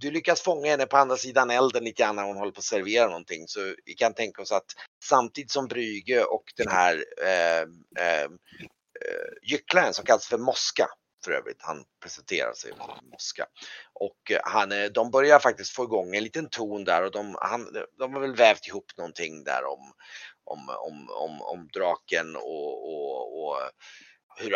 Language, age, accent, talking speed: Swedish, 30-49, native, 180 wpm